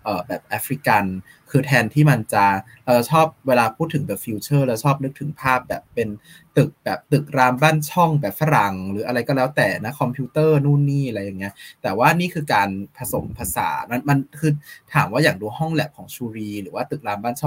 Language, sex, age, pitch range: Thai, male, 20-39, 110-145 Hz